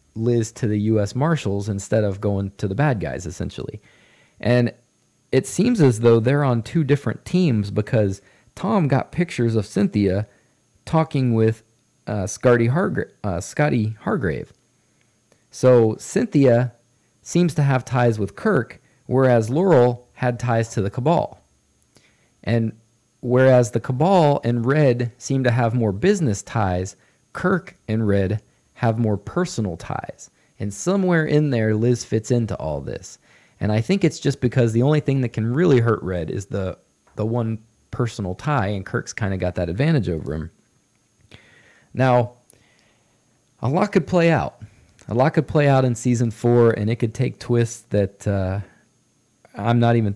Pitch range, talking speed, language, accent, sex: 105-130 Hz, 155 wpm, English, American, male